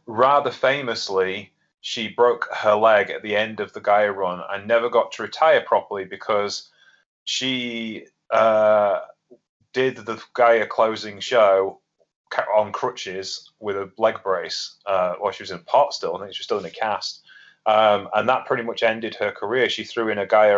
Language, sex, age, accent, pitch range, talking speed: English, male, 30-49, British, 100-115 Hz, 180 wpm